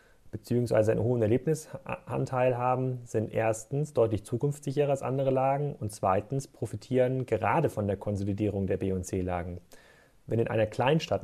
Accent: German